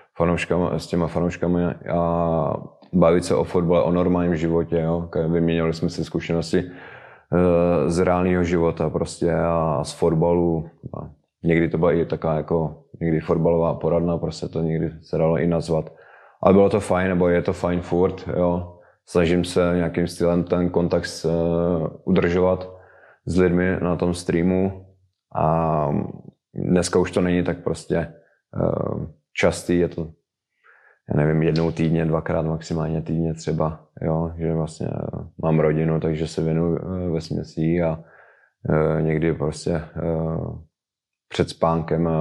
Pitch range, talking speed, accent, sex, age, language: 80-85 Hz, 135 wpm, native, male, 20-39, Czech